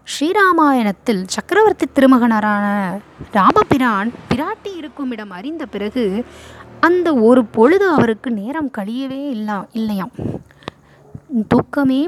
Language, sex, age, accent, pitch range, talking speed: Tamil, female, 20-39, native, 215-280 Hz, 85 wpm